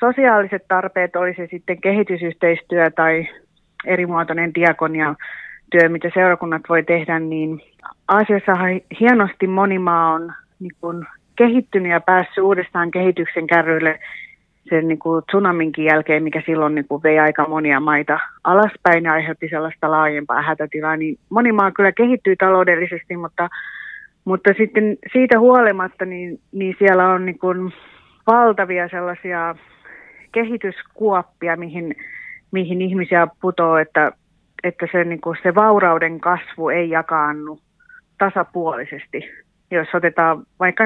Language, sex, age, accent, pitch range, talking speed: Finnish, female, 30-49, native, 160-185 Hz, 115 wpm